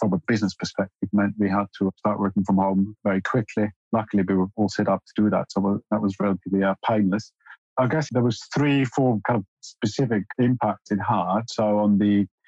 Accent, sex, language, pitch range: British, male, English, 100-115 Hz